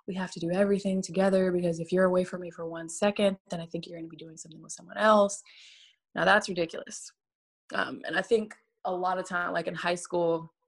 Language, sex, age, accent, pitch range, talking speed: English, female, 20-39, American, 170-200 Hz, 230 wpm